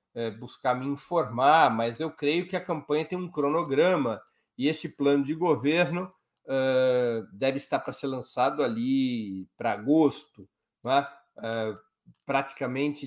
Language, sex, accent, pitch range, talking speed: Portuguese, male, Brazilian, 130-155 Hz, 125 wpm